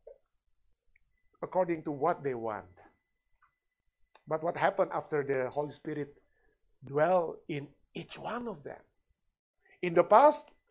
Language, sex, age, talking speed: Indonesian, male, 50-69, 120 wpm